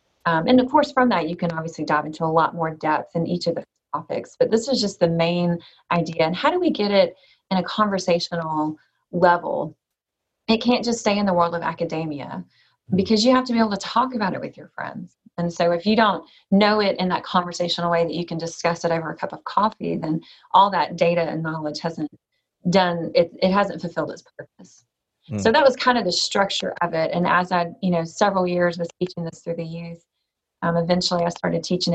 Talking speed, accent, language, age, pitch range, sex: 225 wpm, American, English, 30-49, 165-205 Hz, female